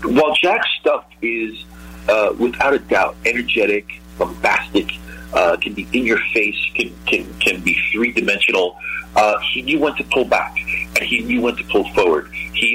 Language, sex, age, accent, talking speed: English, male, 40-59, American, 175 wpm